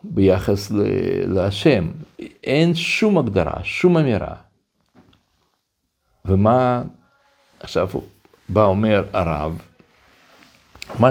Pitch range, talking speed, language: 100-155 Hz, 70 wpm, Hebrew